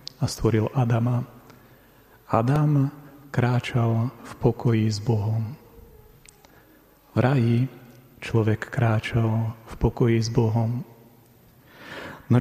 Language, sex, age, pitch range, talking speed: Slovak, male, 30-49, 115-130 Hz, 85 wpm